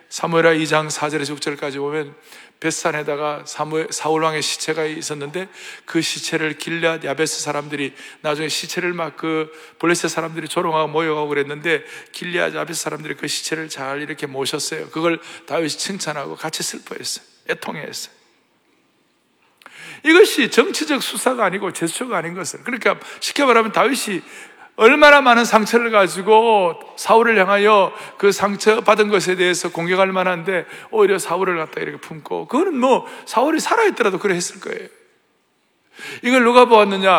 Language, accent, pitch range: Korean, native, 160-245 Hz